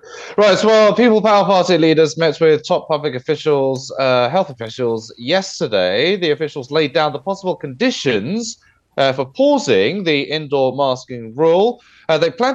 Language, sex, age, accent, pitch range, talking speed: English, male, 20-39, British, 125-170 Hz, 160 wpm